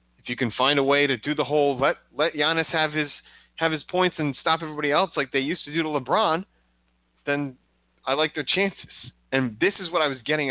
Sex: male